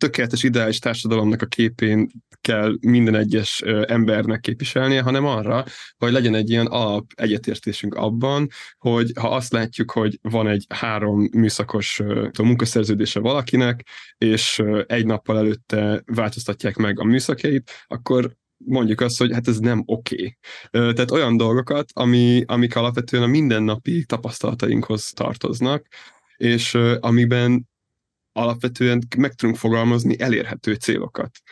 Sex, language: male, Hungarian